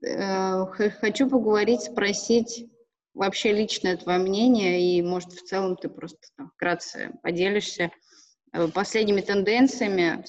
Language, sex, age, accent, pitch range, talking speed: Russian, female, 20-39, native, 180-215 Hz, 110 wpm